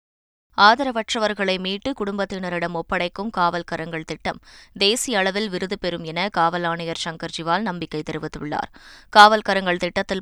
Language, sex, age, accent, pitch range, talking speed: Tamil, female, 20-39, native, 170-200 Hz, 100 wpm